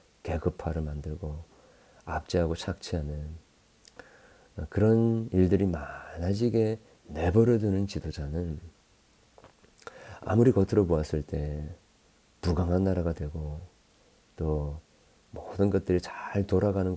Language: Korean